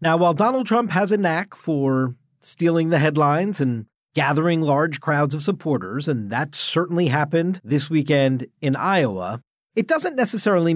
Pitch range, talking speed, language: 130-170 Hz, 155 wpm, English